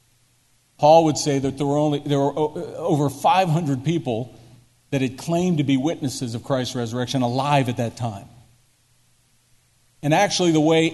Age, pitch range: 50-69, 125-175 Hz